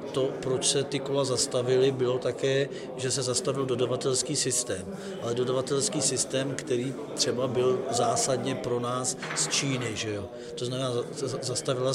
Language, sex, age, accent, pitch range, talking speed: Czech, male, 40-59, native, 120-135 Hz, 145 wpm